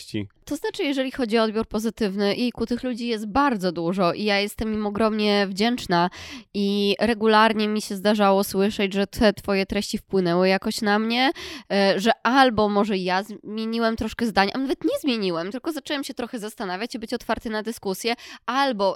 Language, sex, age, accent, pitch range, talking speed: Polish, female, 20-39, native, 200-245 Hz, 175 wpm